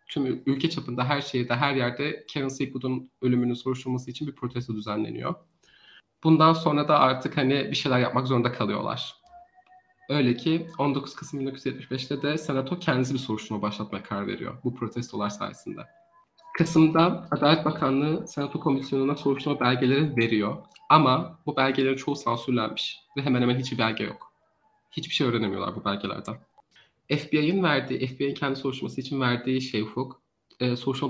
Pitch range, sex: 125-150 Hz, male